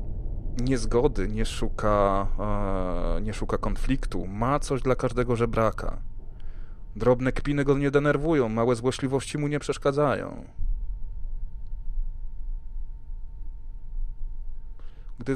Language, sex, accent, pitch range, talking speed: Polish, male, native, 95-140 Hz, 80 wpm